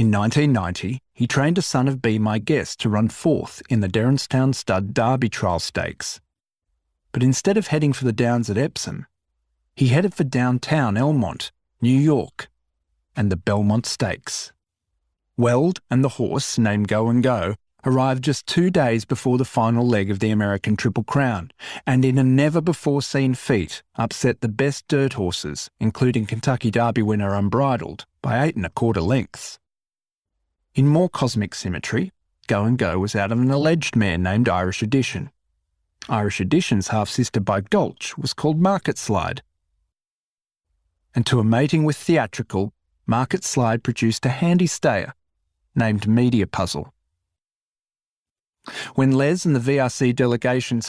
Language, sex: English, male